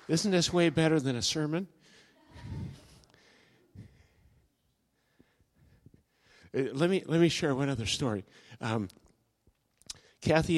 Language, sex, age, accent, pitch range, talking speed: English, male, 60-79, American, 115-145 Hz, 95 wpm